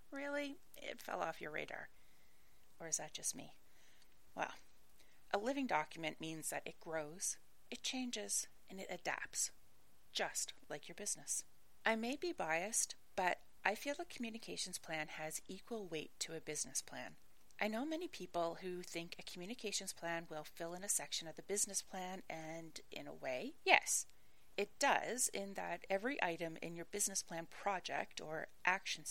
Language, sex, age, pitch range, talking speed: English, female, 30-49, 165-225 Hz, 165 wpm